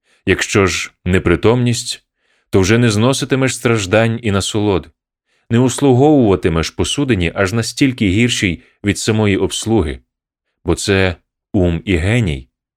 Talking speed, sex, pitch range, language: 115 wpm, male, 95-125 Hz, Ukrainian